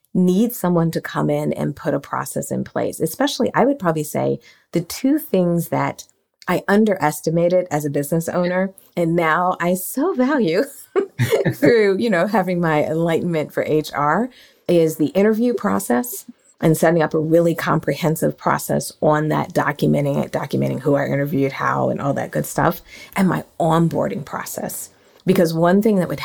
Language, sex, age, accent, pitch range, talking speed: English, female, 40-59, American, 150-195 Hz, 165 wpm